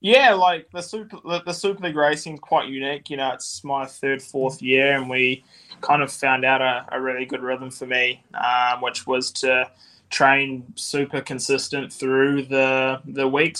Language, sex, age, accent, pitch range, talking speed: English, male, 20-39, Australian, 125-135 Hz, 190 wpm